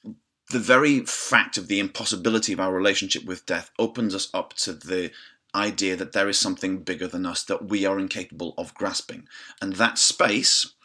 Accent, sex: British, male